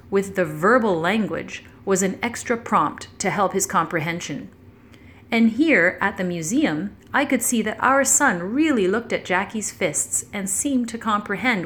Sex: female